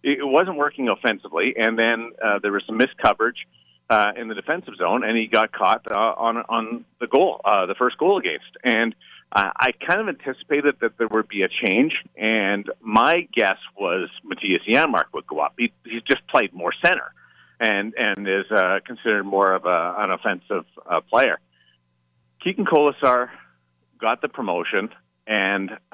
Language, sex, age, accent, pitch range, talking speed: English, male, 50-69, American, 90-115 Hz, 175 wpm